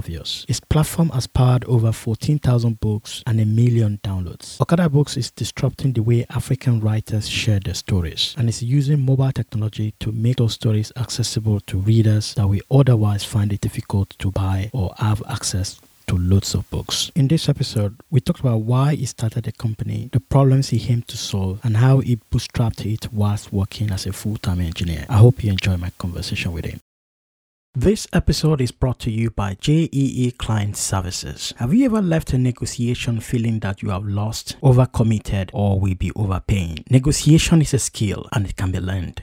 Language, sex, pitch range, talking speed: English, male, 100-130 Hz, 185 wpm